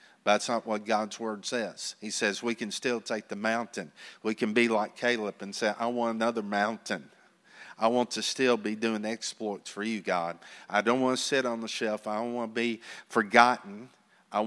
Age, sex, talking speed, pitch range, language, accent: 50-69, male, 205 wpm, 100-120 Hz, English, American